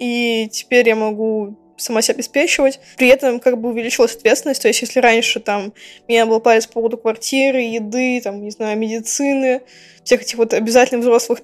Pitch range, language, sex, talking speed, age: 225-255 Hz, Russian, female, 175 wpm, 20-39